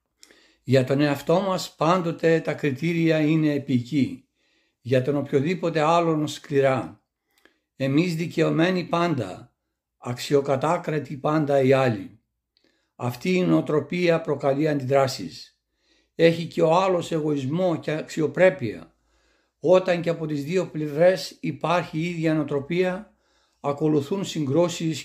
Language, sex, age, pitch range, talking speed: Greek, male, 60-79, 145-170 Hz, 110 wpm